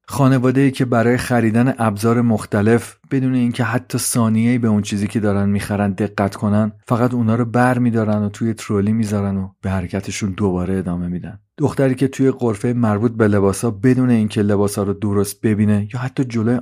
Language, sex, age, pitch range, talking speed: Persian, male, 40-59, 105-135 Hz, 190 wpm